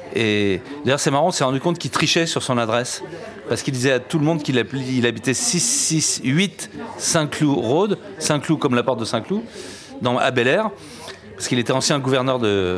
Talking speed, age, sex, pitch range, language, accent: 190 wpm, 40-59, male, 115-160 Hz, French, French